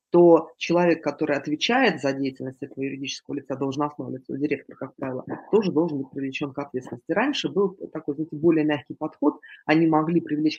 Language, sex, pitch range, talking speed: Russian, female, 145-170 Hz, 170 wpm